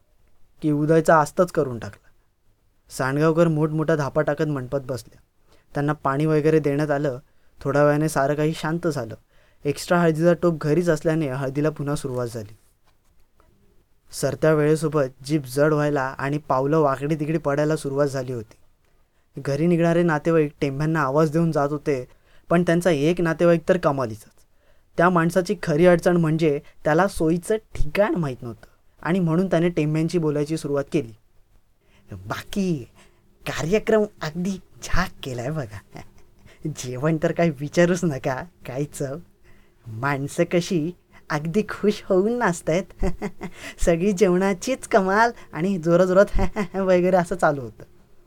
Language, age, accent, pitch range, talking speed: Marathi, 20-39, native, 140-170 Hz, 130 wpm